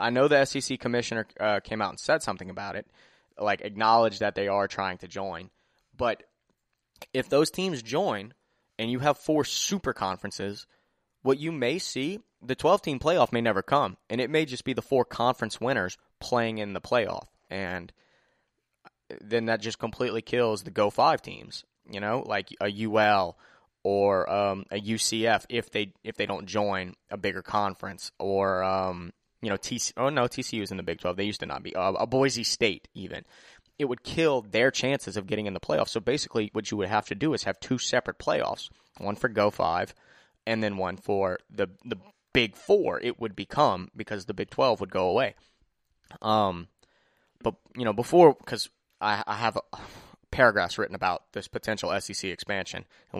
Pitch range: 100-125 Hz